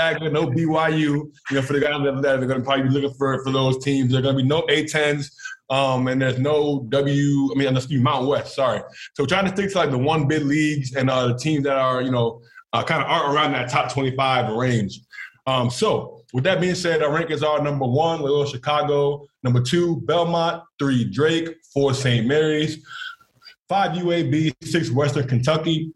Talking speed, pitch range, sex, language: 210 wpm, 130-155 Hz, male, English